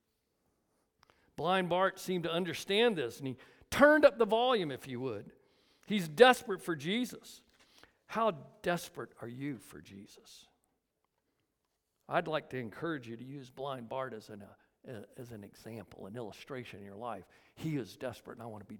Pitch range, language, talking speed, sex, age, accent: 155-250 Hz, English, 160 wpm, male, 60-79, American